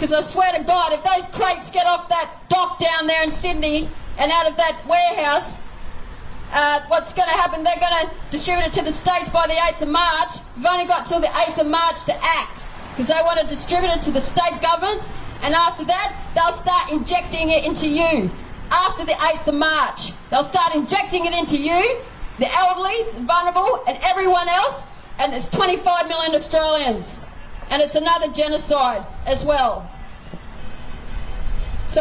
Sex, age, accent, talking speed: female, 40-59, Australian, 185 wpm